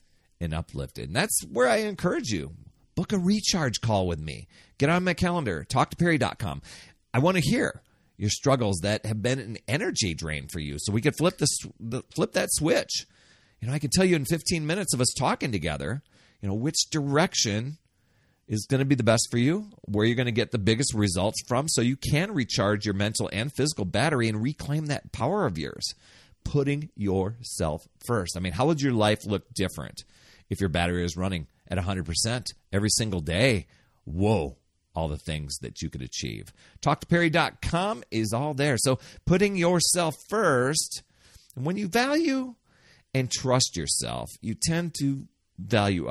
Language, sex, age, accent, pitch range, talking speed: English, male, 40-59, American, 95-140 Hz, 180 wpm